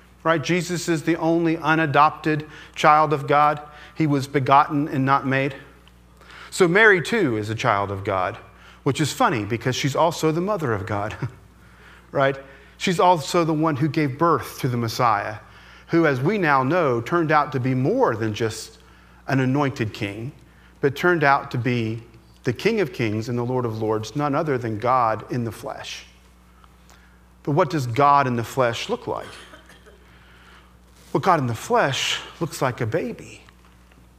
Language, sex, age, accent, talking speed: English, male, 40-59, American, 170 wpm